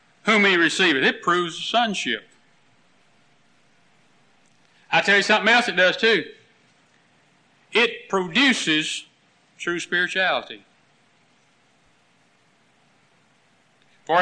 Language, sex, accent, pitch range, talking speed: English, male, American, 145-205 Hz, 90 wpm